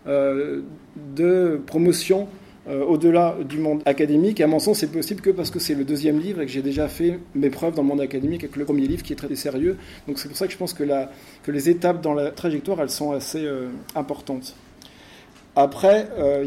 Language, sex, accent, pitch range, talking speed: French, male, French, 145-180 Hz, 220 wpm